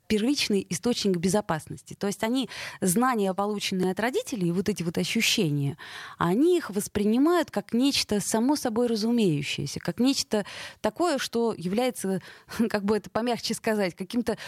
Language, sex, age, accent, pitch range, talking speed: Russian, female, 20-39, native, 185-255 Hz, 135 wpm